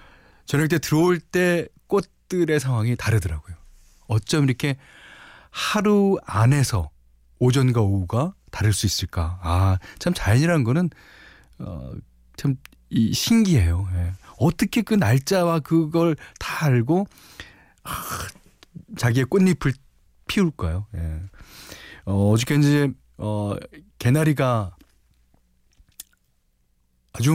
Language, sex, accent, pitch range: Korean, male, native, 95-155 Hz